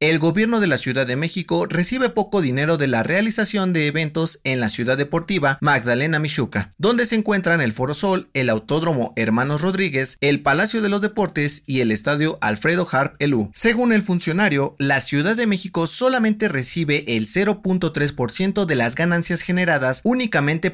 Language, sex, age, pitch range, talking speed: Spanish, male, 30-49, 130-185 Hz, 170 wpm